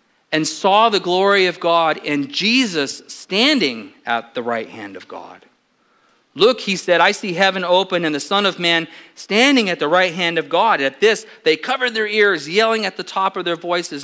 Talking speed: 200 wpm